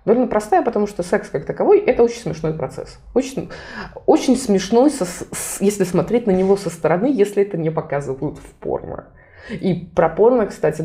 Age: 20-39